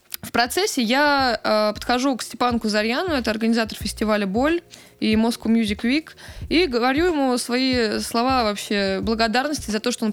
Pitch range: 215-265 Hz